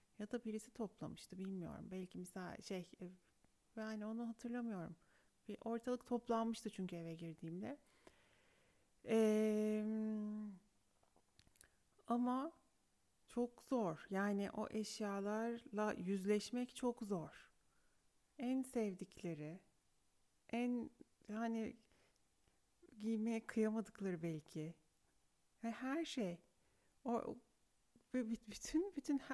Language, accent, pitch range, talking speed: Turkish, native, 200-245 Hz, 80 wpm